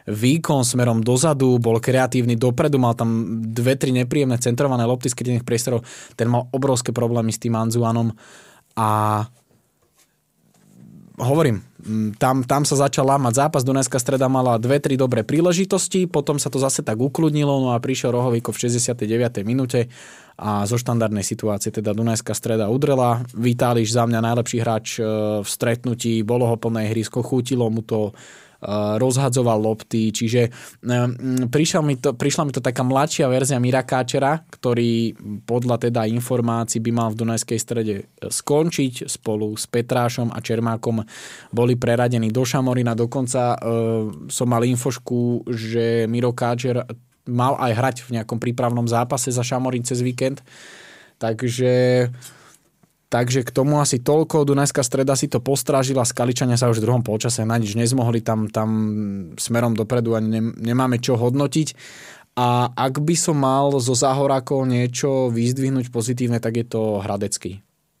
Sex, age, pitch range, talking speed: male, 20-39, 115-135 Hz, 145 wpm